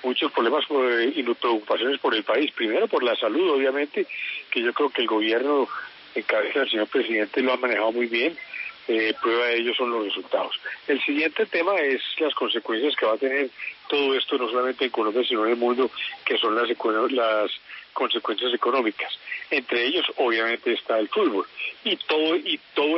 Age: 40-59